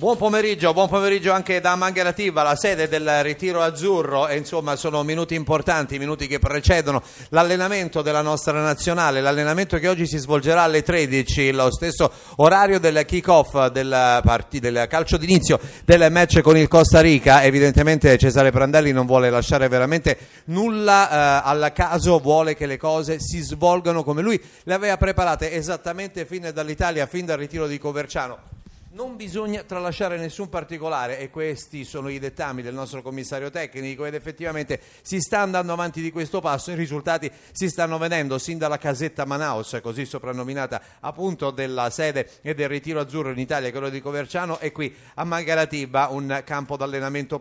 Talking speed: 165 wpm